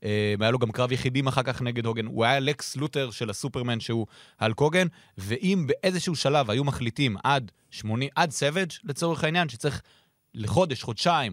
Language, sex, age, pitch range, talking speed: Hebrew, male, 30-49, 105-145 Hz, 160 wpm